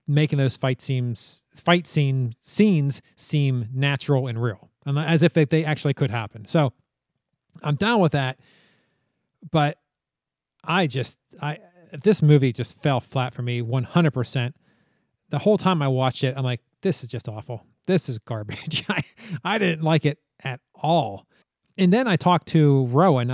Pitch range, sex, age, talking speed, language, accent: 125-160 Hz, male, 30-49, 165 wpm, English, American